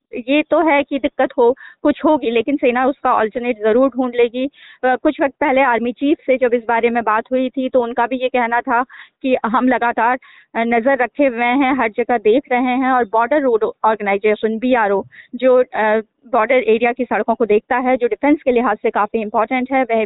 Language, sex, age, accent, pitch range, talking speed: Hindi, female, 20-39, native, 235-275 Hz, 205 wpm